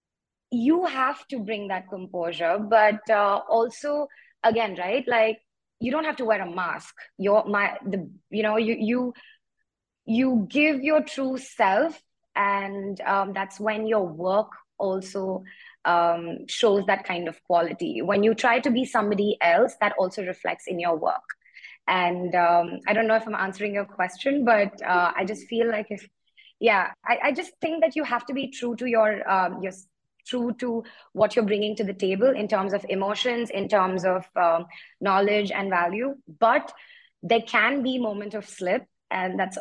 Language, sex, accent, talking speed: English, female, Indian, 175 wpm